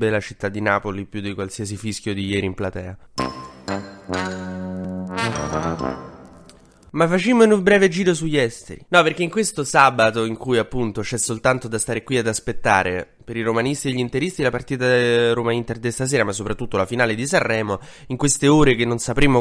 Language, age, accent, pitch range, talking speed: Italian, 20-39, native, 110-140 Hz, 180 wpm